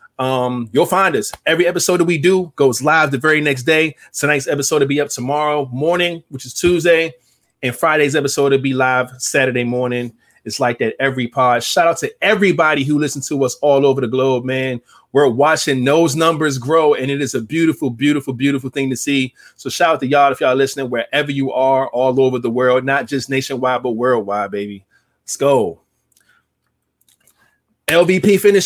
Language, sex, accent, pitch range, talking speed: English, male, American, 130-155 Hz, 190 wpm